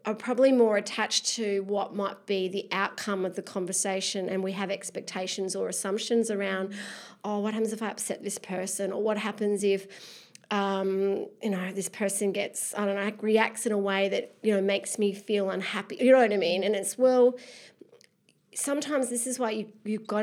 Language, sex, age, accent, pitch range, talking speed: English, female, 30-49, Australian, 195-225 Hz, 200 wpm